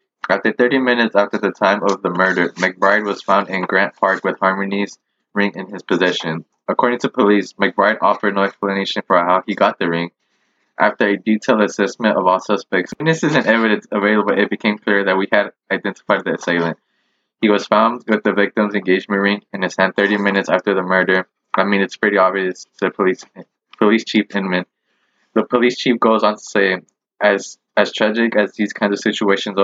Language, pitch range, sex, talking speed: English, 95-105 Hz, male, 190 wpm